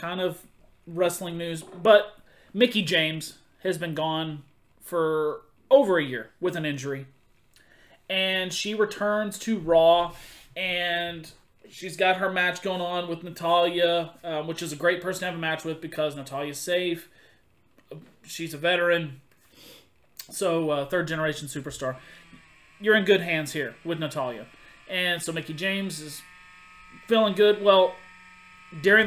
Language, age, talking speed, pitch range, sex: English, 30-49, 140 wpm, 155-190 Hz, male